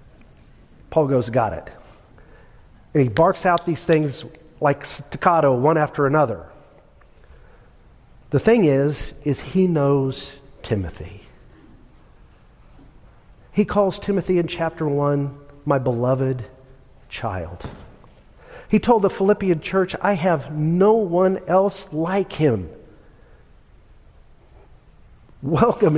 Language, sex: English, male